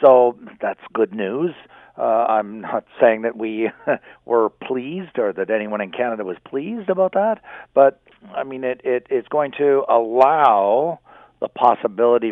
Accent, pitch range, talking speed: American, 105-140 Hz, 155 wpm